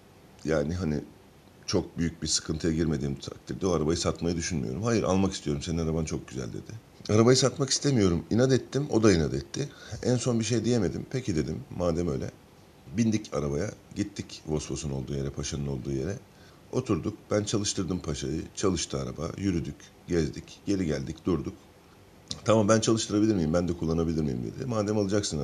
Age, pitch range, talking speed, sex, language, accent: 50-69, 80-110 Hz, 165 wpm, male, Turkish, native